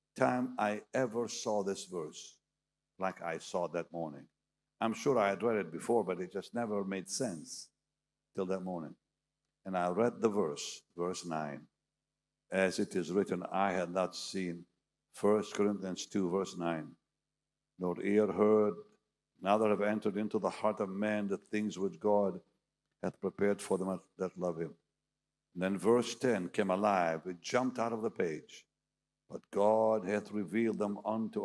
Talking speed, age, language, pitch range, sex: 165 wpm, 60-79, English, 95-115 Hz, male